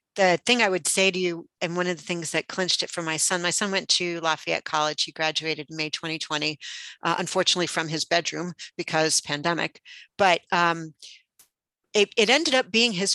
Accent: American